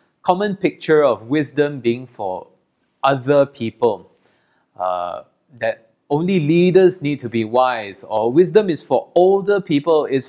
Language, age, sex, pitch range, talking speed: English, 20-39, male, 120-195 Hz, 135 wpm